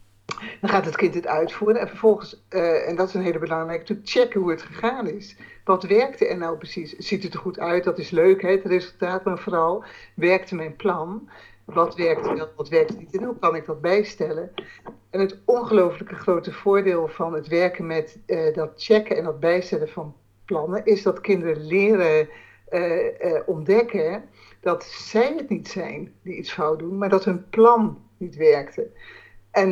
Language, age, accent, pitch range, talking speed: Dutch, 60-79, Dutch, 170-215 Hz, 190 wpm